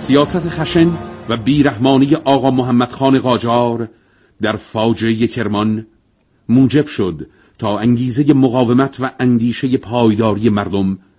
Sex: male